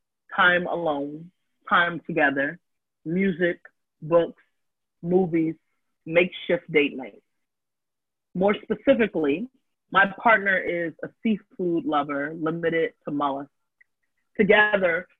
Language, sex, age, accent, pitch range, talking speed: English, female, 30-49, American, 150-185 Hz, 85 wpm